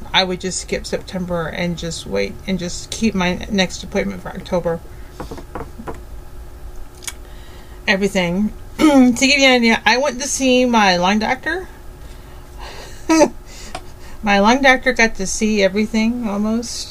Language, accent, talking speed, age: English, American, 130 wpm, 40-59